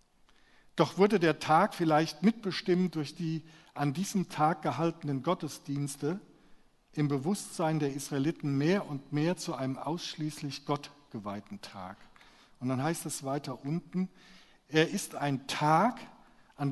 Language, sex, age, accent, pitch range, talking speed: German, male, 50-69, German, 145-180 Hz, 135 wpm